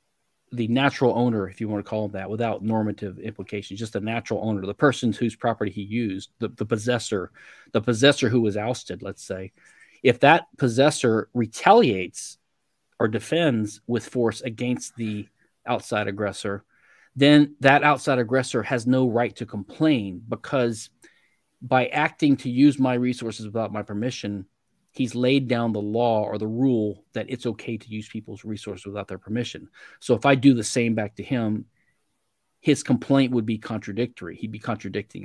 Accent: American